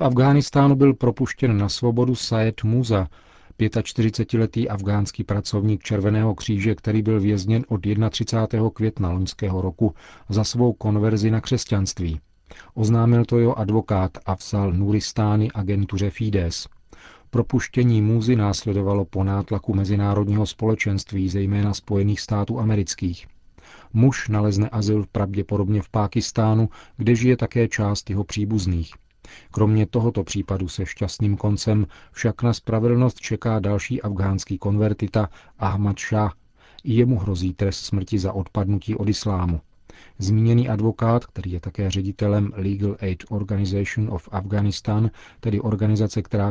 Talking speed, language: 120 wpm, Czech